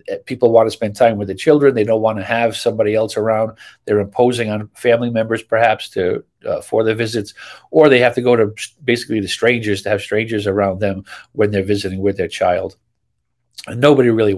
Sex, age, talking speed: male, 50-69, 210 wpm